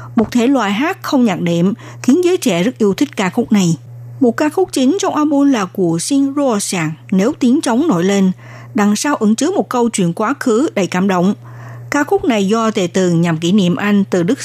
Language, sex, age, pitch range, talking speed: Vietnamese, female, 60-79, 180-255 Hz, 225 wpm